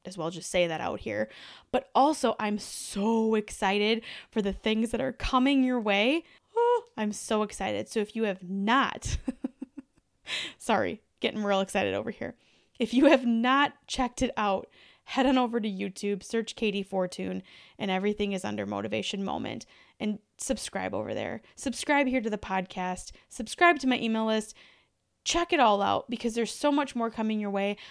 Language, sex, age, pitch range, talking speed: English, female, 20-39, 200-250 Hz, 175 wpm